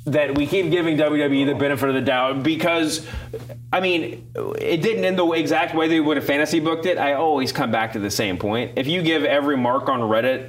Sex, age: male, 30-49